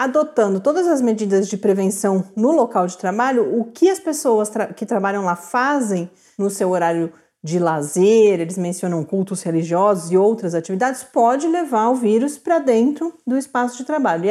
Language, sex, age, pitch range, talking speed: Portuguese, female, 40-59, 205-260 Hz, 175 wpm